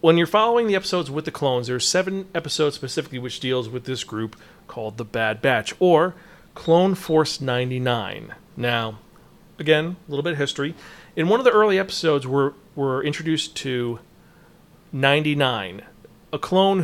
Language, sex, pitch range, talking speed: English, male, 130-165 Hz, 165 wpm